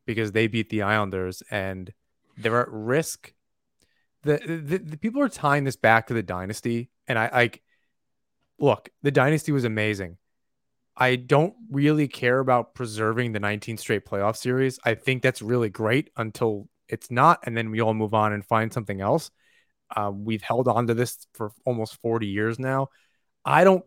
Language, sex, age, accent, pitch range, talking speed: English, male, 30-49, American, 110-140 Hz, 175 wpm